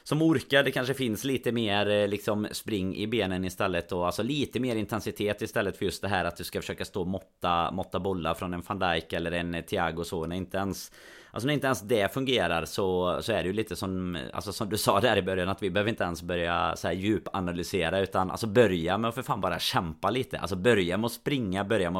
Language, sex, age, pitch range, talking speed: Swedish, male, 30-49, 90-110 Hz, 235 wpm